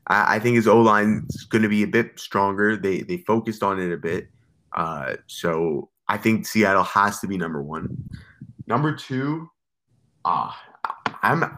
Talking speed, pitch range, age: 170 wpm, 95-115 Hz, 20-39